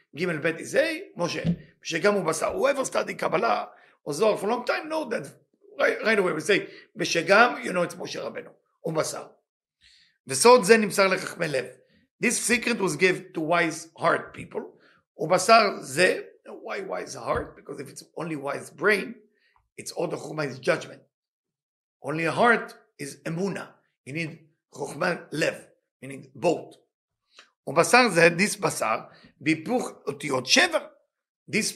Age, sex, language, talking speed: 50-69, male, English, 150 wpm